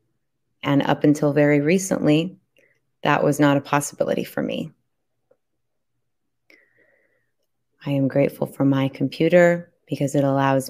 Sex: female